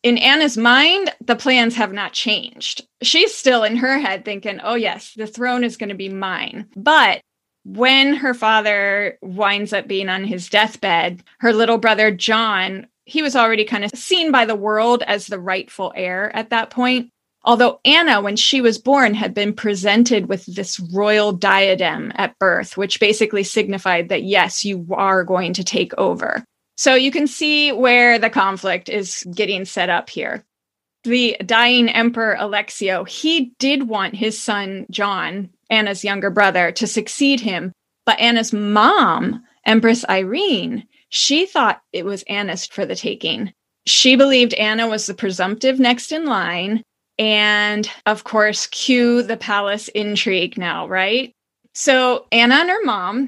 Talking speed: 160 wpm